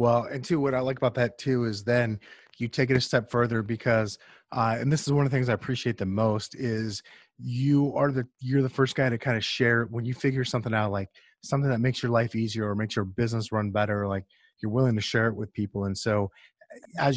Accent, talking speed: American, 250 wpm